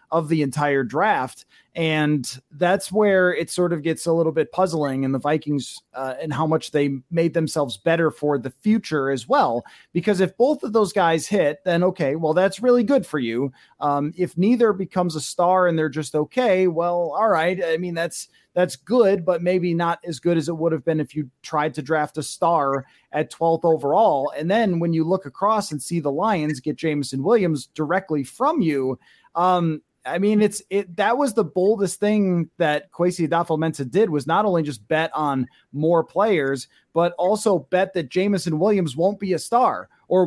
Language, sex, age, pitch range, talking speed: English, male, 30-49, 155-190 Hz, 200 wpm